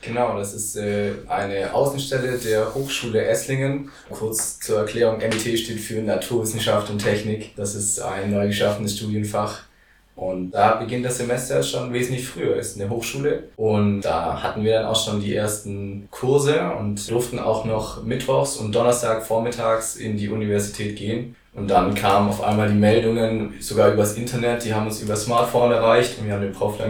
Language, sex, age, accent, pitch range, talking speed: German, male, 20-39, German, 105-120 Hz, 170 wpm